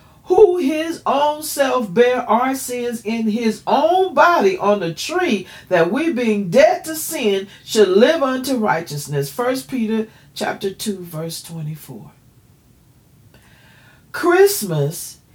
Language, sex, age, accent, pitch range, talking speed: English, female, 40-59, American, 140-210 Hz, 120 wpm